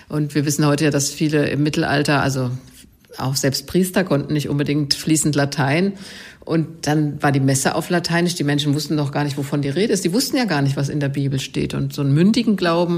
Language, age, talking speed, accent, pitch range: German, 50-69, 230 wpm, German, 145-175 Hz